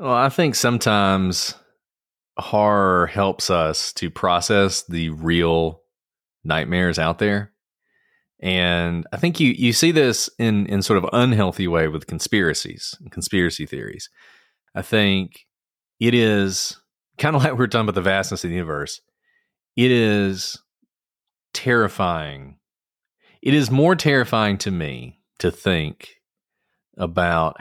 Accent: American